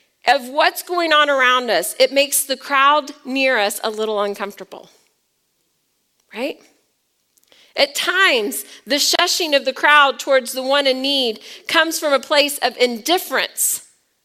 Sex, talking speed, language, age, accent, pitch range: female, 145 wpm, English, 40-59, American, 230-295 Hz